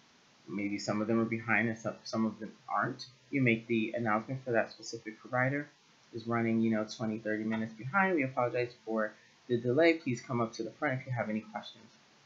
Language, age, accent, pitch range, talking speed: English, 30-49, American, 120-160 Hz, 210 wpm